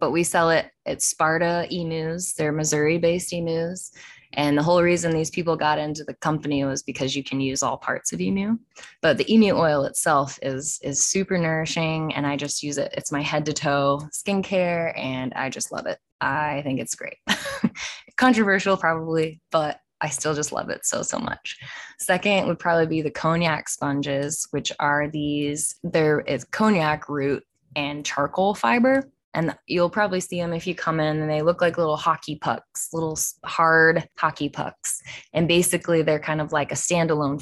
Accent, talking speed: American, 180 wpm